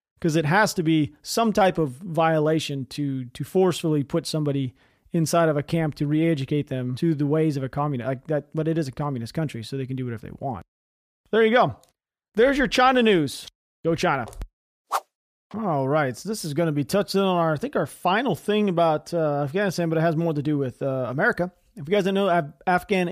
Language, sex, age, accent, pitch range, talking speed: English, male, 30-49, American, 150-190 Hz, 225 wpm